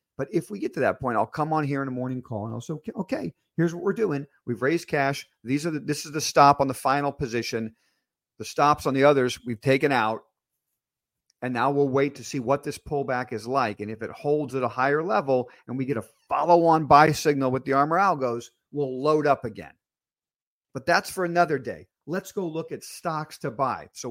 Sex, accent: male, American